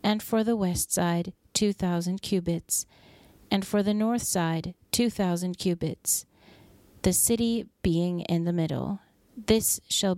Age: 40-59